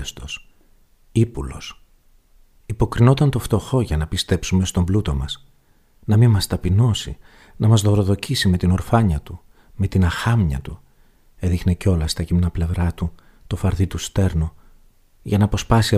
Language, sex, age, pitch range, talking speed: Greek, male, 40-59, 85-105 Hz, 145 wpm